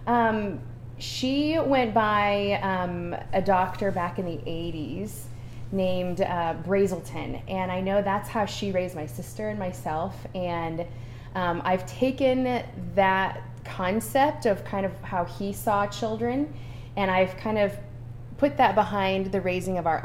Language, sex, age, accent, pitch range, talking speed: English, female, 20-39, American, 155-215 Hz, 145 wpm